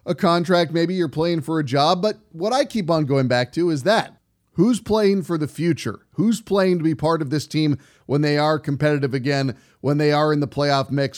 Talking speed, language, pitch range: 230 wpm, English, 145-180 Hz